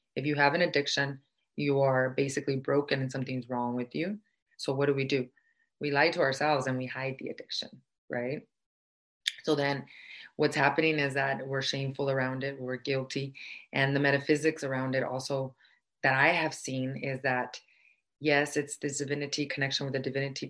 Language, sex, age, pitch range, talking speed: English, female, 30-49, 130-145 Hz, 180 wpm